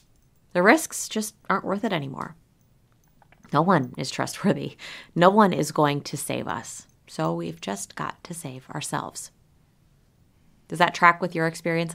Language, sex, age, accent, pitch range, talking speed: English, female, 30-49, American, 160-205 Hz, 155 wpm